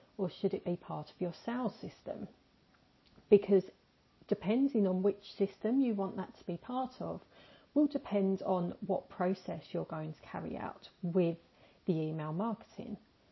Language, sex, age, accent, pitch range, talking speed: English, female, 40-59, British, 170-215 Hz, 160 wpm